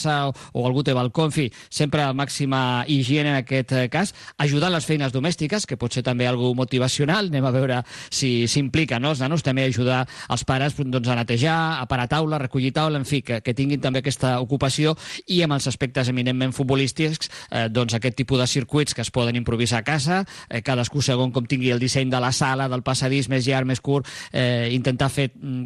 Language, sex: English, male